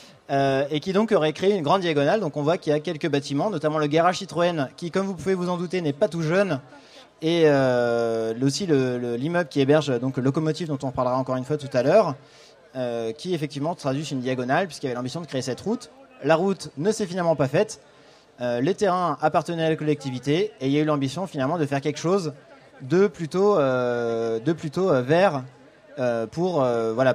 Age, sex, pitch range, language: 30-49, male, 130-170 Hz, French